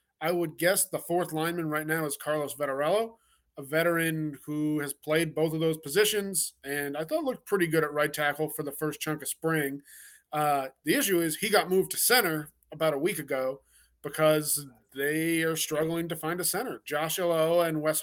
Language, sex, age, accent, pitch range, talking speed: English, male, 20-39, American, 145-170 Hz, 200 wpm